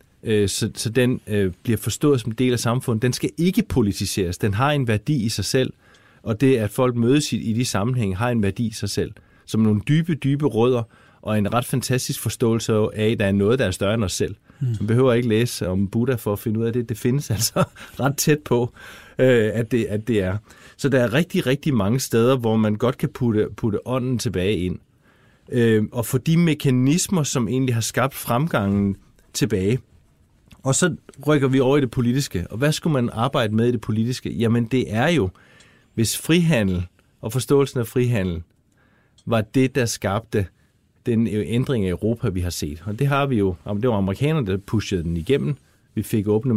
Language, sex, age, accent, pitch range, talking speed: Danish, male, 30-49, native, 105-130 Hz, 210 wpm